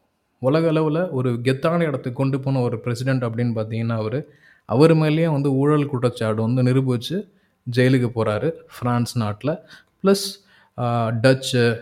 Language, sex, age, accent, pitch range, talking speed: Tamil, male, 20-39, native, 120-145 Hz, 125 wpm